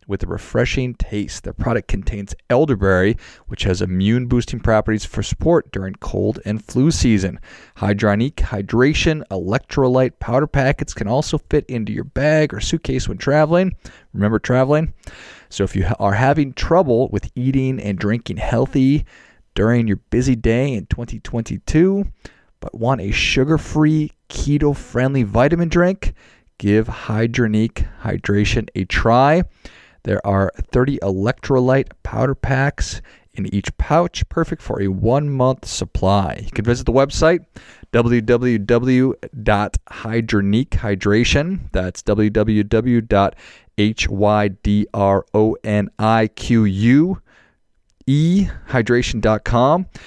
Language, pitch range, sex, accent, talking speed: English, 100-130 Hz, male, American, 105 wpm